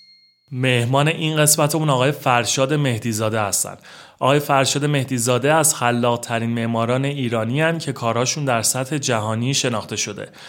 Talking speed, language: 135 wpm, Persian